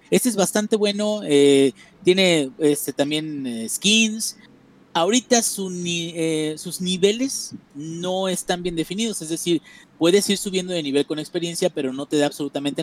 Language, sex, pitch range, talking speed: Spanish, male, 140-195 Hz, 145 wpm